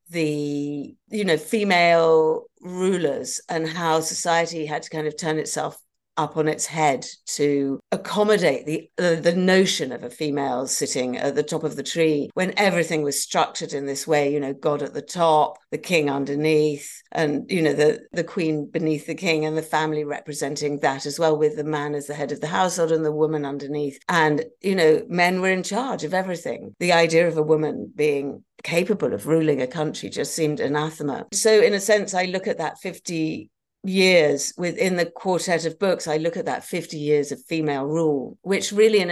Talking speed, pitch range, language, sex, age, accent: 200 wpm, 150-175 Hz, English, female, 50-69, British